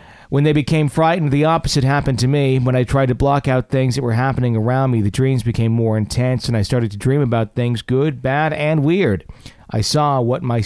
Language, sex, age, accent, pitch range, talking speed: English, male, 40-59, American, 110-135 Hz, 230 wpm